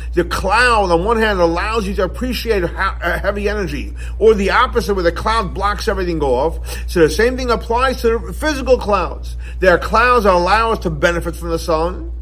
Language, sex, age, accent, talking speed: English, male, 50-69, American, 200 wpm